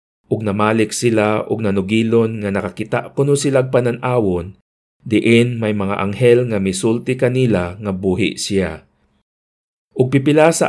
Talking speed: 110 wpm